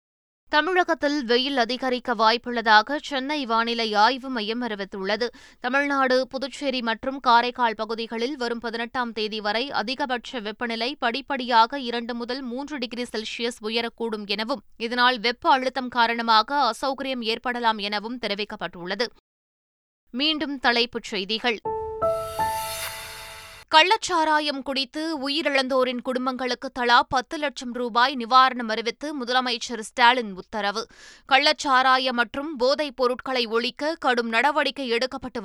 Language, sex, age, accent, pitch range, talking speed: Tamil, female, 20-39, native, 225-270 Hz, 95 wpm